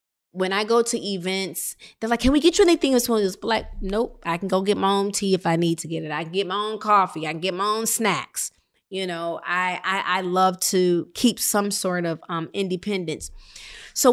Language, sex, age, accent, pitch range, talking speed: English, female, 20-39, American, 180-225 Hz, 230 wpm